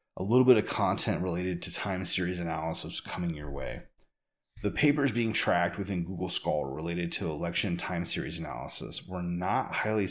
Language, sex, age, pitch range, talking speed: English, male, 30-49, 85-105 Hz, 170 wpm